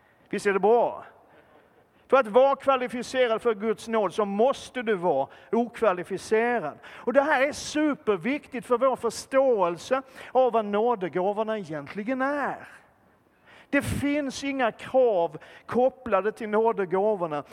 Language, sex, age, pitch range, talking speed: Swedish, male, 40-59, 195-255 Hz, 125 wpm